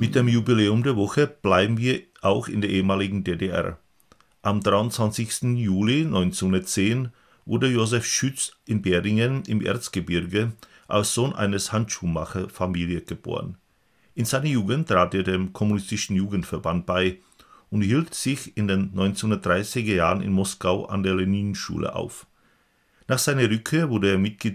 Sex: male